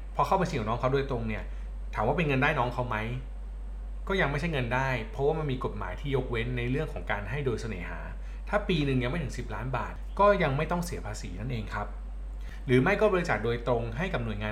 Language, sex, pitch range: Thai, male, 110-155 Hz